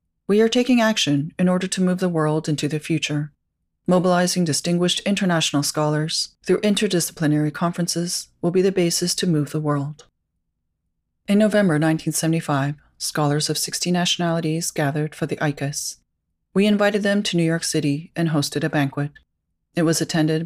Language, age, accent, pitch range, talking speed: English, 30-49, American, 145-175 Hz, 155 wpm